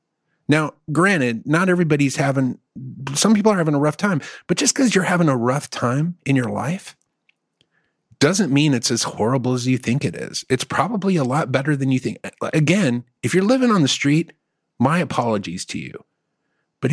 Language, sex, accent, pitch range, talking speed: English, male, American, 125-175 Hz, 190 wpm